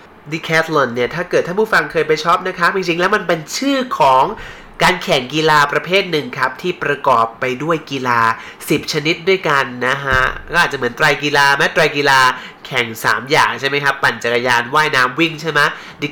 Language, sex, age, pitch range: Thai, male, 30-49, 135-185 Hz